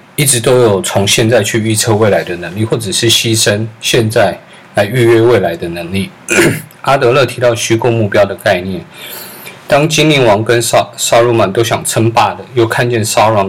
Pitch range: 105-120 Hz